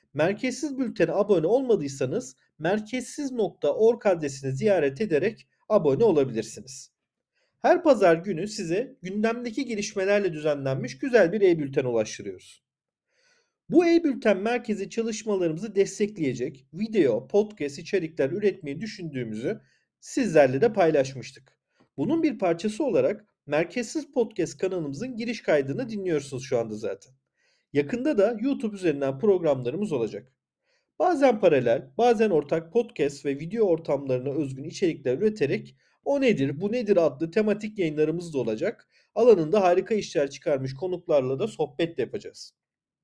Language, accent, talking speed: Turkish, native, 115 wpm